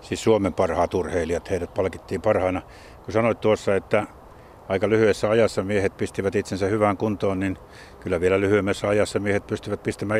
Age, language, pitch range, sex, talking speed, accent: 60-79, Finnish, 100-120 Hz, male, 160 wpm, native